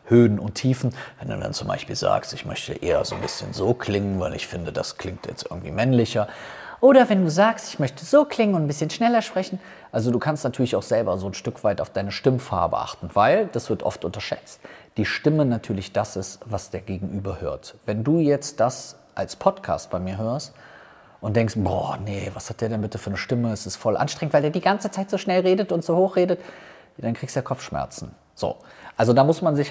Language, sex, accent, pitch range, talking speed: German, male, German, 105-145 Hz, 230 wpm